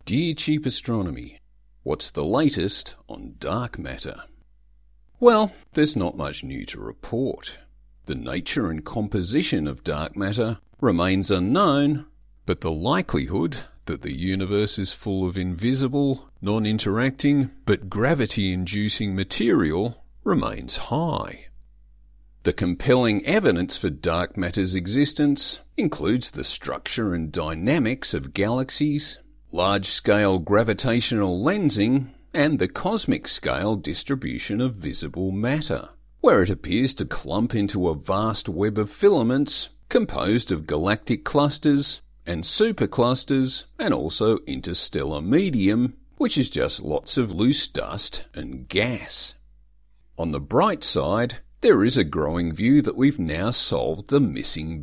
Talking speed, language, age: 120 wpm, English, 50-69